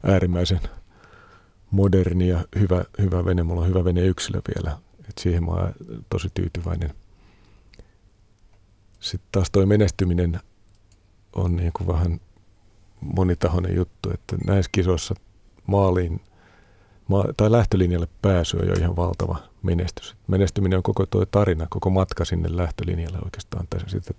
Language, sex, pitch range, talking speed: Finnish, male, 85-100 Hz, 125 wpm